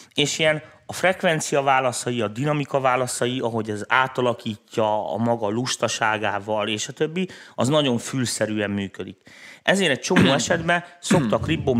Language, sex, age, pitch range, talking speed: Hungarian, male, 30-49, 105-130 Hz, 135 wpm